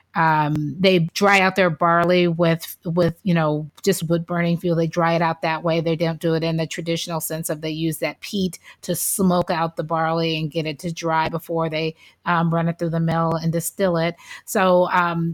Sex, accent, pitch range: female, American, 165-185 Hz